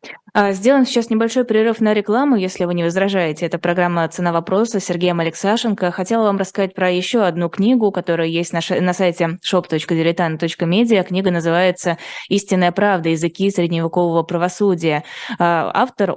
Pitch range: 165-190 Hz